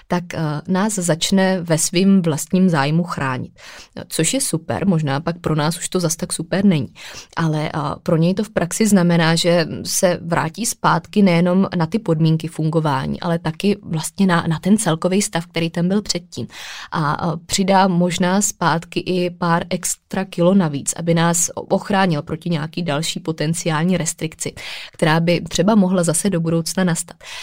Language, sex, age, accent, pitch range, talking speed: Czech, female, 20-39, native, 160-180 Hz, 160 wpm